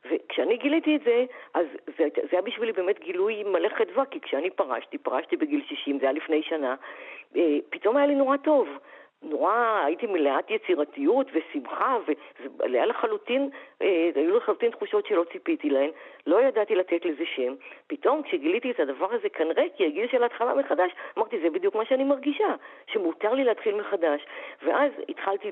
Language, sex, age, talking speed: Hebrew, female, 50-69, 155 wpm